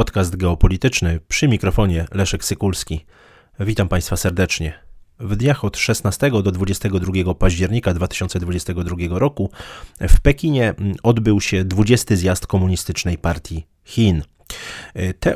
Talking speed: 110 wpm